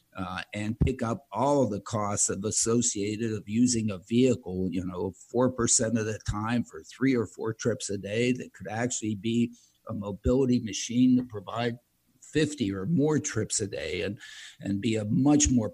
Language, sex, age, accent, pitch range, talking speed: English, male, 60-79, American, 105-125 Hz, 180 wpm